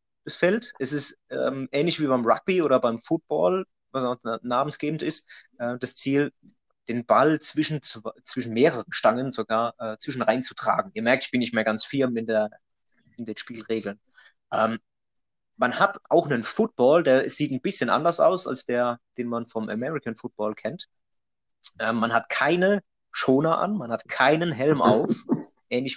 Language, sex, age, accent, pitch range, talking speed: German, male, 30-49, German, 120-150 Hz, 170 wpm